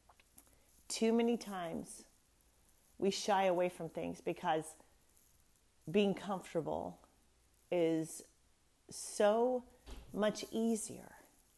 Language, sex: English, female